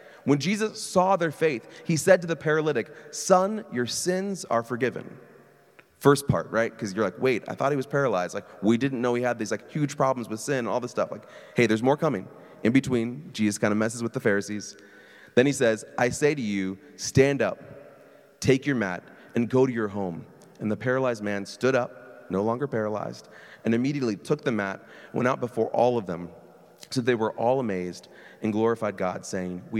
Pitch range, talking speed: 110-160 Hz, 210 wpm